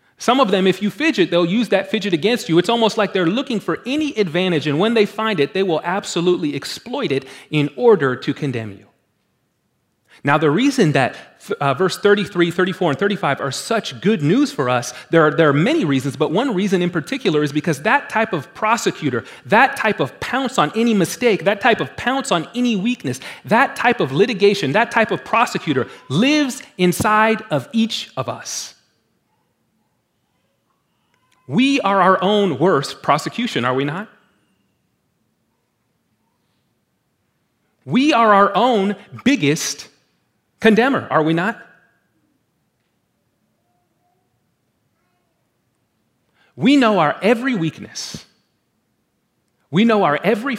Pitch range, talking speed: 155-225 Hz, 145 wpm